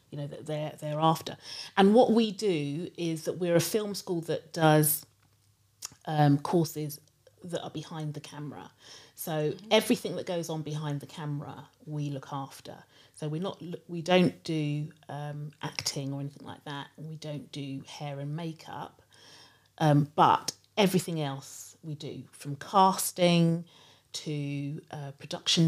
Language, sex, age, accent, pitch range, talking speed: English, female, 40-59, British, 145-160 Hz, 155 wpm